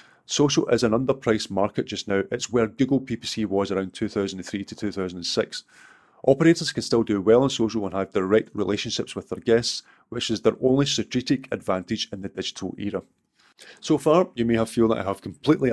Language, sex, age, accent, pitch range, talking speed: English, male, 30-49, British, 100-120 Hz, 190 wpm